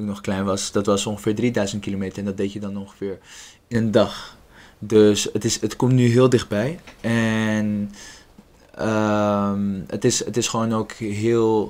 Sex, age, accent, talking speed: male, 20-39, Dutch, 175 wpm